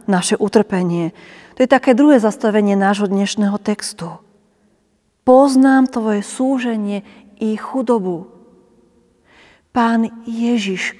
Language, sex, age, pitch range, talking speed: Slovak, female, 40-59, 200-230 Hz, 95 wpm